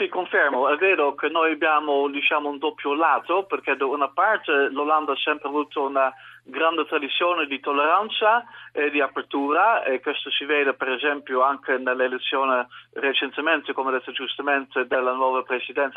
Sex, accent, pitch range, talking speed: male, Dutch, 130-160 Hz, 155 wpm